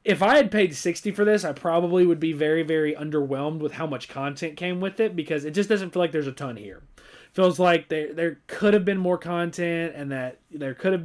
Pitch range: 150-180 Hz